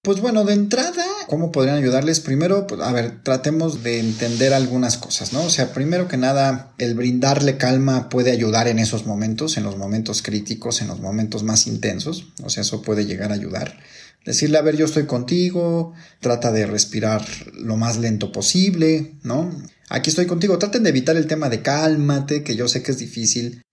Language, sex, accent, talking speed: Spanish, male, Mexican, 190 wpm